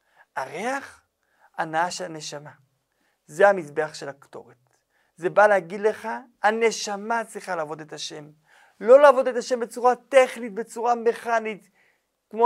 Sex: male